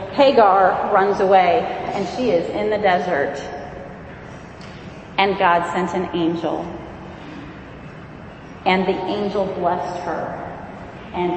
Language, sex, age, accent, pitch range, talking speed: English, female, 30-49, American, 180-210 Hz, 105 wpm